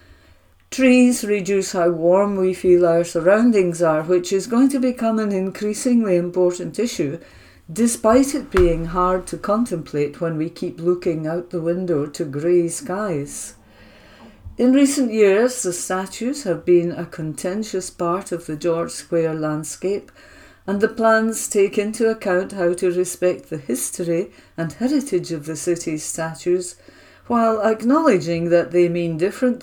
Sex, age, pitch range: female, 50-69, 155-200 Hz